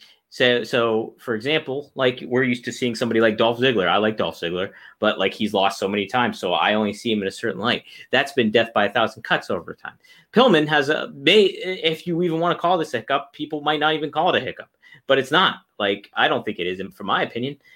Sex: male